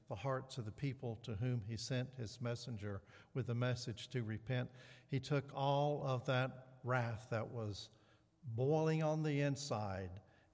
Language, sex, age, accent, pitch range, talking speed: English, male, 60-79, American, 120-150 Hz, 160 wpm